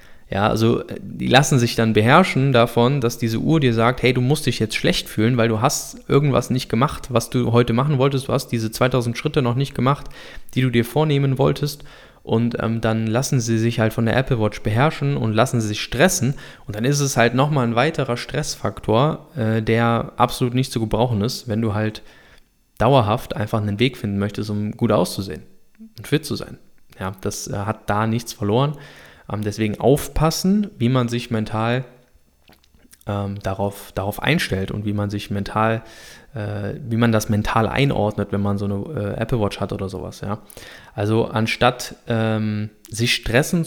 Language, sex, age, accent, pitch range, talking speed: German, male, 20-39, German, 105-130 Hz, 190 wpm